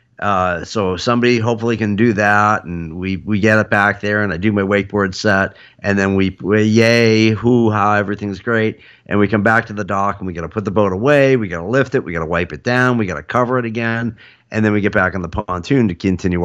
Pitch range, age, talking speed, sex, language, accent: 100-125 Hz, 50-69, 255 wpm, male, English, American